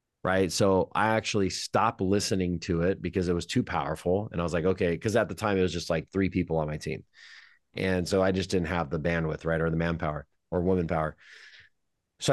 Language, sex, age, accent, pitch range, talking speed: English, male, 30-49, American, 90-110 Hz, 230 wpm